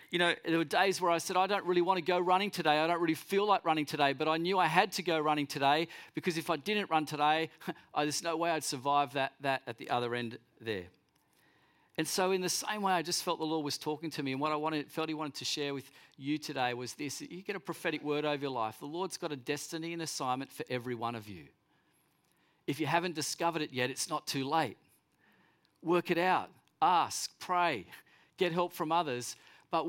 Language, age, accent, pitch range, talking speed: English, 40-59, Australian, 145-175 Hz, 240 wpm